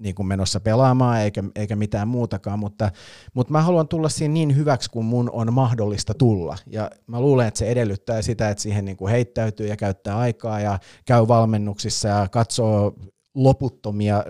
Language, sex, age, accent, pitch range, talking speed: Finnish, male, 30-49, native, 100-115 Hz, 170 wpm